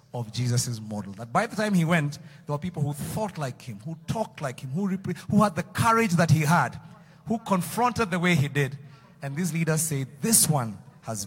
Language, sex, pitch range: English, male, 150-210 Hz